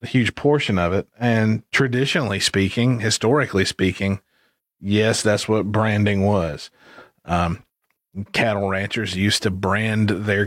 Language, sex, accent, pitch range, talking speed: English, male, American, 100-130 Hz, 125 wpm